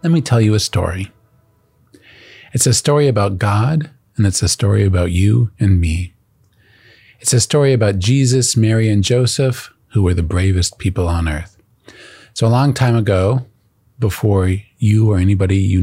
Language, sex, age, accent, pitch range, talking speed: English, male, 40-59, American, 100-120 Hz, 165 wpm